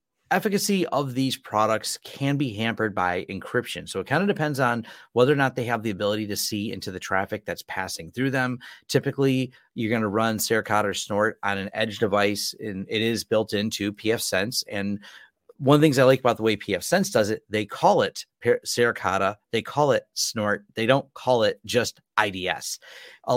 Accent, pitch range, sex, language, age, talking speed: American, 105-145 Hz, male, English, 30-49, 200 wpm